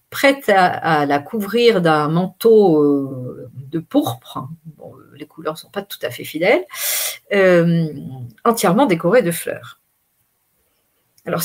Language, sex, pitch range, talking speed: French, female, 160-240 Hz, 130 wpm